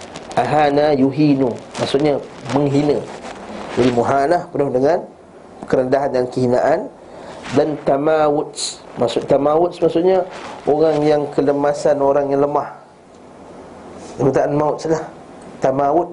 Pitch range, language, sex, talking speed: 140-175 Hz, Malay, male, 95 wpm